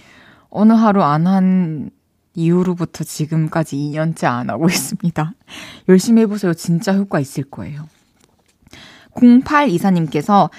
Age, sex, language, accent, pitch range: 20-39, female, Korean, native, 170-215 Hz